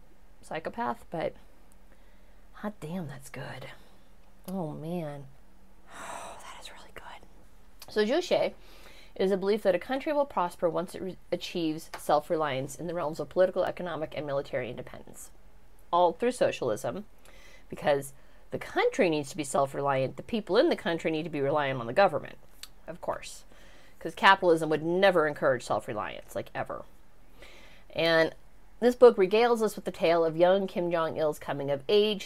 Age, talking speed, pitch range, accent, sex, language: 30-49, 155 wpm, 150-190 Hz, American, female, English